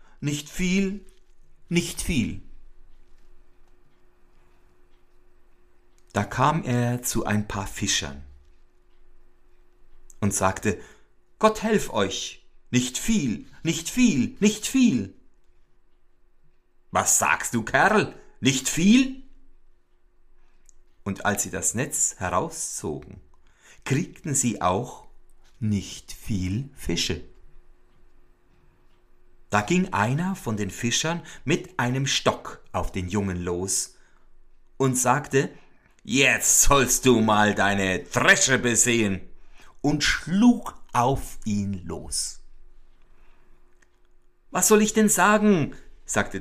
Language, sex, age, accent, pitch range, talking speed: German, male, 60-79, German, 90-145 Hz, 95 wpm